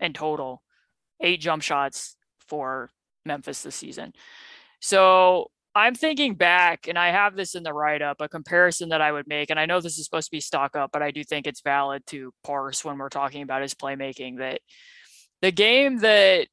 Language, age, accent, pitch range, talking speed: English, 20-39, American, 150-185 Hz, 190 wpm